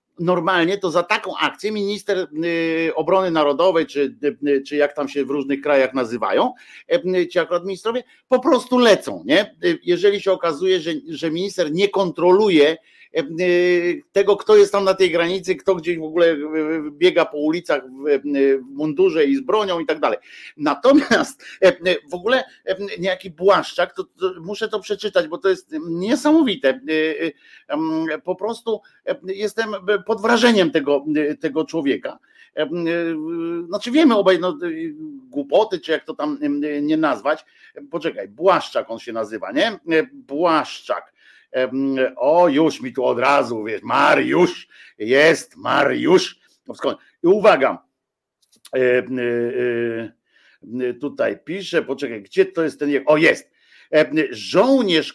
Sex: male